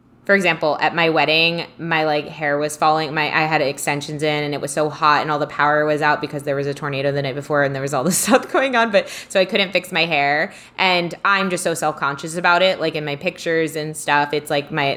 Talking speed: 260 wpm